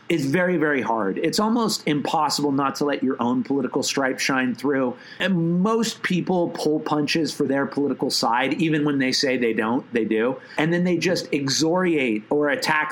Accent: American